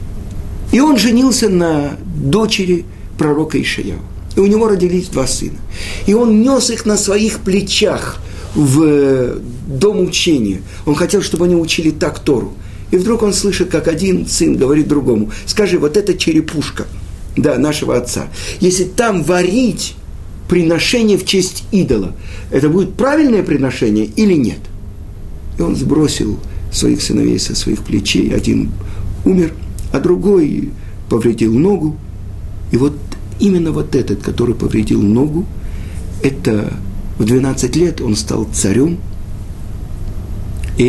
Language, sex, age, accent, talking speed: Russian, male, 50-69, native, 130 wpm